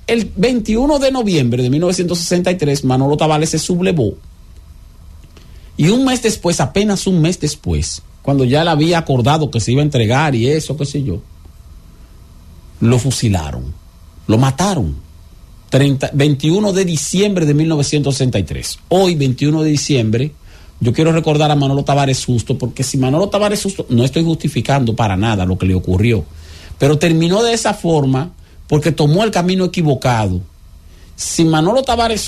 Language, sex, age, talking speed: English, male, 50-69, 150 wpm